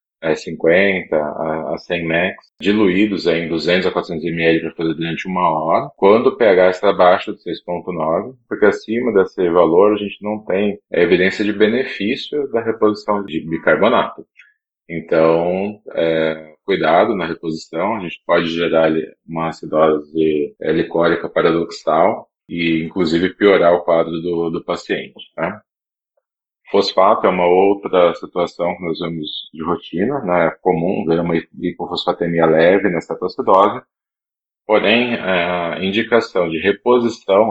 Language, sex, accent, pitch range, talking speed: Portuguese, male, Brazilian, 80-100 Hz, 135 wpm